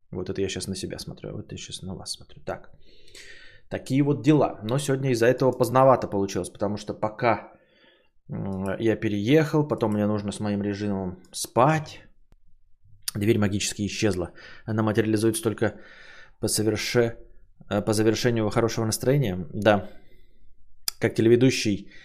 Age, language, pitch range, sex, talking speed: 20-39, Bulgarian, 100-115 Hz, male, 140 wpm